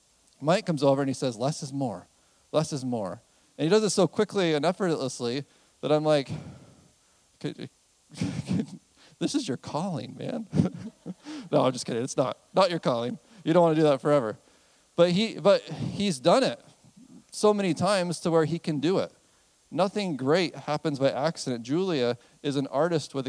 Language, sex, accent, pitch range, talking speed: English, male, American, 130-170 Hz, 180 wpm